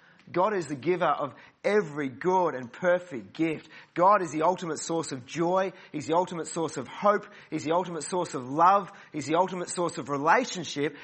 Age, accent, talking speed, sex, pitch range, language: 30-49, Australian, 190 wpm, male, 145-180 Hz, English